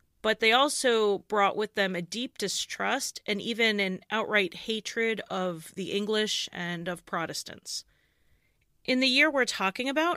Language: English